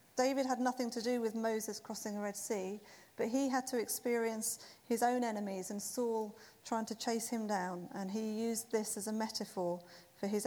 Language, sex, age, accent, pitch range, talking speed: English, female, 40-59, British, 215-265 Hz, 200 wpm